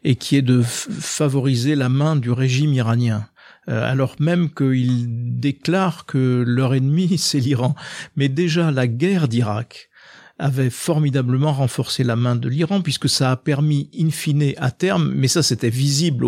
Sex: male